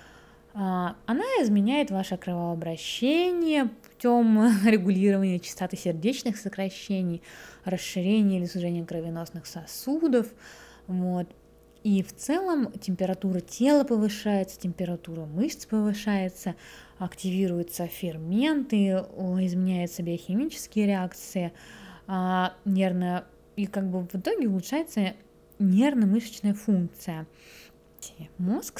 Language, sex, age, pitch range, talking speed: Russian, female, 20-39, 175-215 Hz, 80 wpm